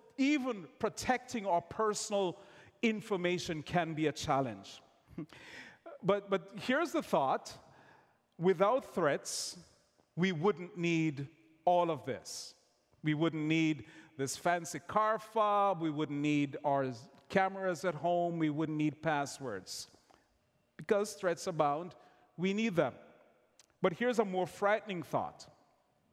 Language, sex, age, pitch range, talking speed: English, male, 40-59, 155-210 Hz, 120 wpm